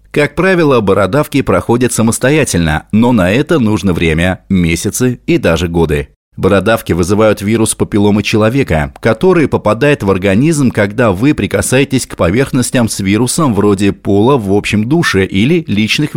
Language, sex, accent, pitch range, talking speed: Russian, male, native, 90-135 Hz, 135 wpm